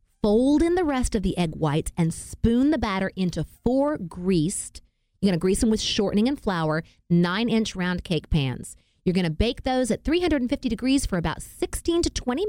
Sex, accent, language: female, American, English